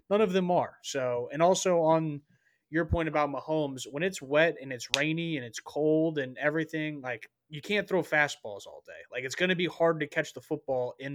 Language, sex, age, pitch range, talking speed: English, male, 20-39, 130-160 Hz, 215 wpm